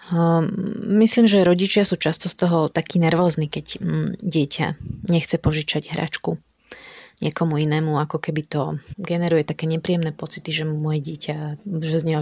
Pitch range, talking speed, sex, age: 155-175 Hz, 140 wpm, female, 20-39